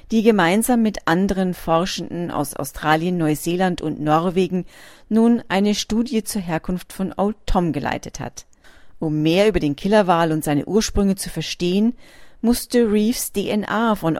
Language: German